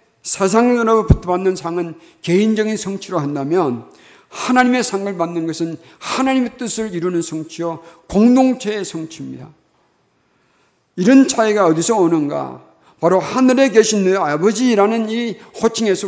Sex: male